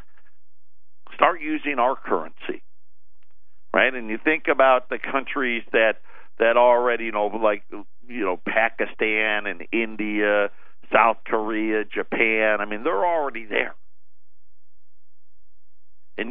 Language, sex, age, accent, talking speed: English, male, 50-69, American, 115 wpm